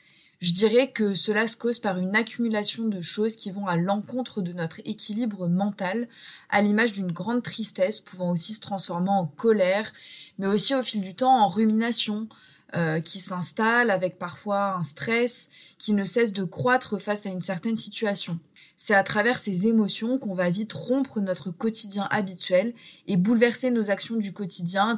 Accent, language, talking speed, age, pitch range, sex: French, French, 175 wpm, 20-39, 190-225 Hz, female